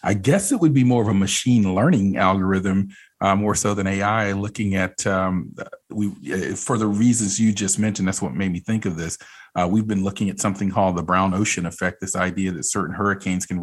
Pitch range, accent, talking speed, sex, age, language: 95-110 Hz, American, 220 wpm, male, 40-59, English